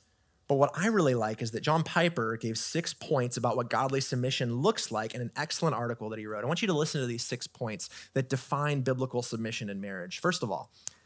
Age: 30-49